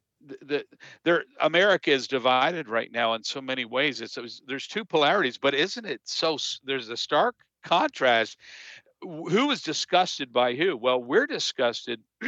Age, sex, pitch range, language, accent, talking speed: 50-69, male, 120-155 Hz, English, American, 155 wpm